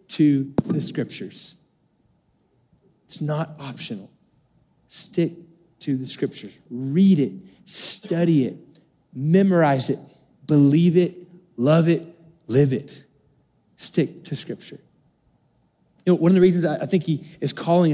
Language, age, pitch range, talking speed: English, 30-49, 150-205 Hz, 120 wpm